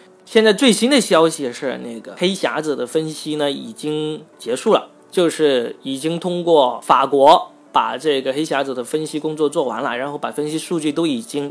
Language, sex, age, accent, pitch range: Chinese, male, 20-39, native, 135-165 Hz